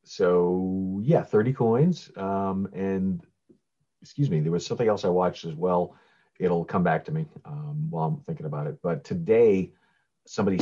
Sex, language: male, English